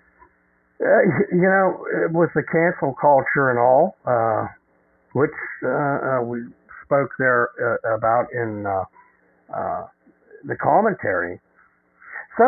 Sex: male